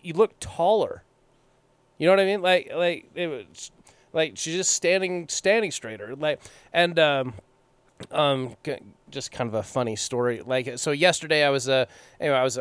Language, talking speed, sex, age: English, 175 wpm, male, 20-39